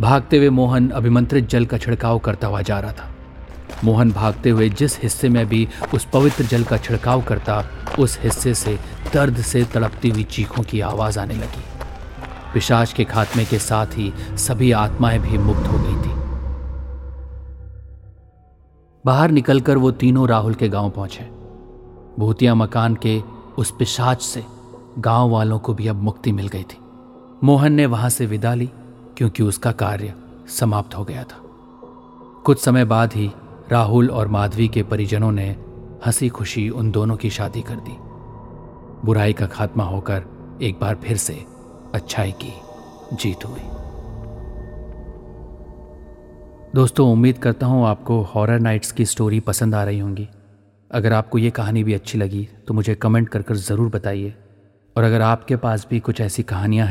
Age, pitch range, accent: 40-59, 100-120 Hz, native